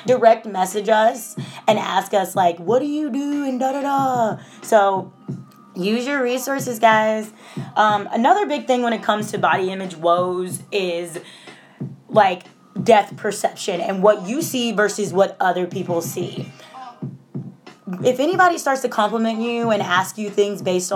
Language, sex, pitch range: English, female, 180-235 Hz